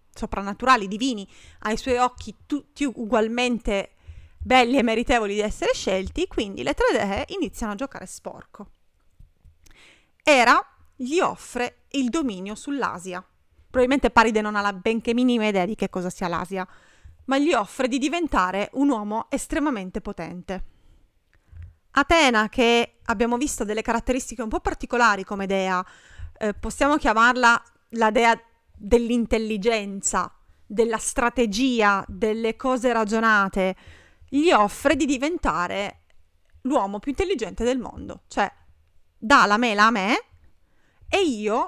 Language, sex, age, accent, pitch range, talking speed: Italian, female, 30-49, native, 200-275 Hz, 125 wpm